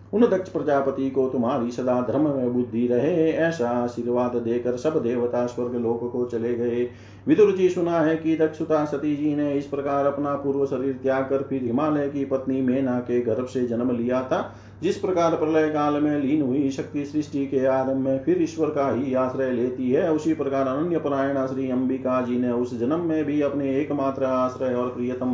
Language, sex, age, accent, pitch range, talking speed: Hindi, male, 40-59, native, 125-140 Hz, 195 wpm